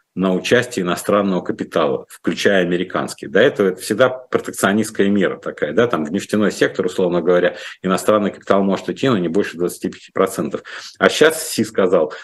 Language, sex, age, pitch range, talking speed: Russian, male, 50-69, 95-130 Hz, 155 wpm